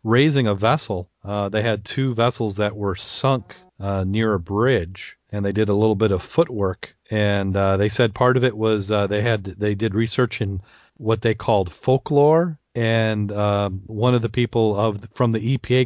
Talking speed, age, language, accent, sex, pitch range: 195 wpm, 40-59, English, American, male, 100-120 Hz